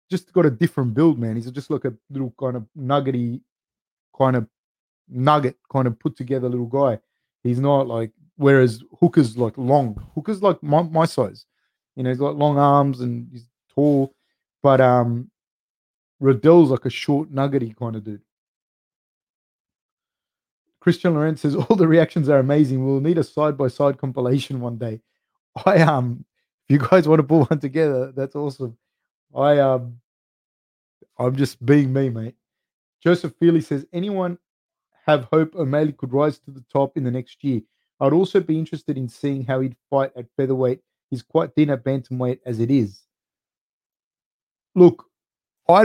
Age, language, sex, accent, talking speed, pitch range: 30-49, English, male, Australian, 165 wpm, 125-160 Hz